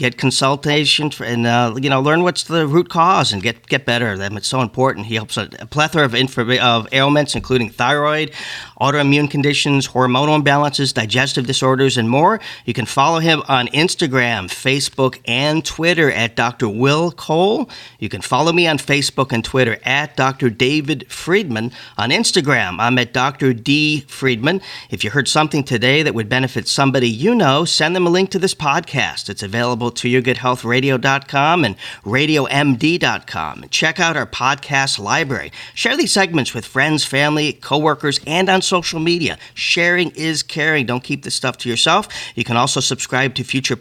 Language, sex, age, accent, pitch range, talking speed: English, male, 40-59, American, 120-150 Hz, 170 wpm